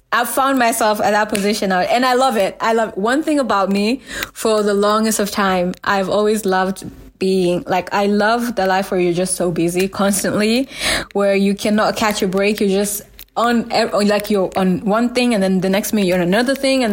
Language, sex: English, female